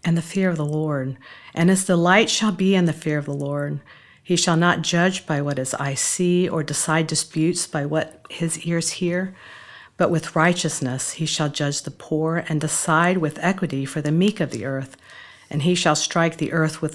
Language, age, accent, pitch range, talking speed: English, 50-69, American, 150-175 Hz, 210 wpm